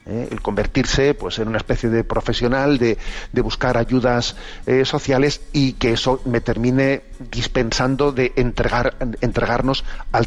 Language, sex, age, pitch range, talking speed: Spanish, male, 40-59, 115-135 Hz, 145 wpm